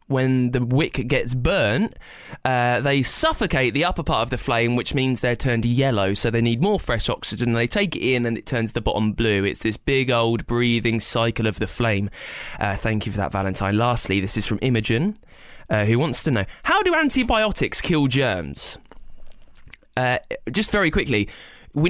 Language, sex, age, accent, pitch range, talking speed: English, male, 20-39, British, 115-145 Hz, 190 wpm